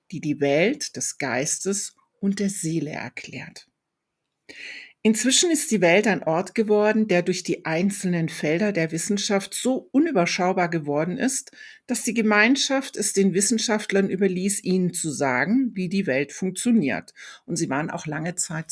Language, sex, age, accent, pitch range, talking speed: German, female, 60-79, German, 160-205 Hz, 150 wpm